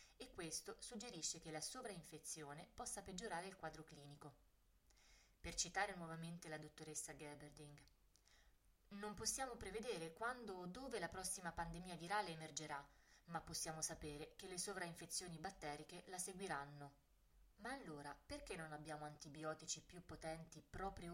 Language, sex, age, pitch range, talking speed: Italian, female, 20-39, 150-190 Hz, 130 wpm